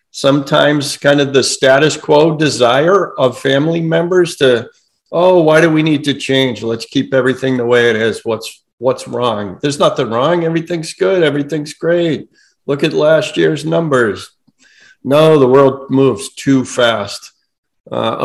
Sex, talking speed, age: male, 155 wpm, 50-69